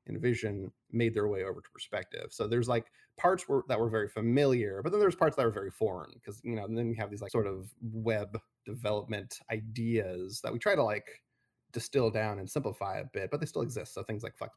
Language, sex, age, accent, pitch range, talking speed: English, male, 20-39, American, 105-120 Hz, 235 wpm